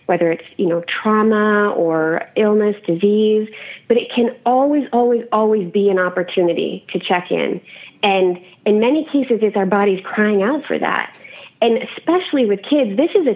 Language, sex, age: English, female, 30-49